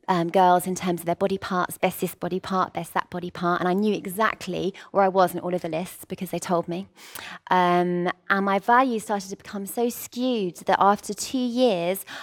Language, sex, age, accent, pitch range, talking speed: English, female, 20-39, British, 180-205 Hz, 220 wpm